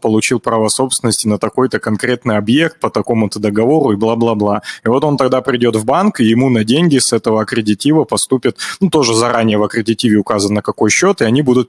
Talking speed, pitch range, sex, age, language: 195 wpm, 105-130 Hz, male, 20-39, Russian